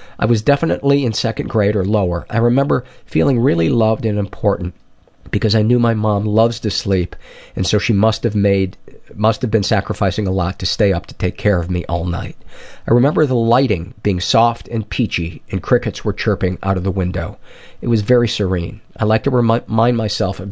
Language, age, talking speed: English, 40-59, 210 wpm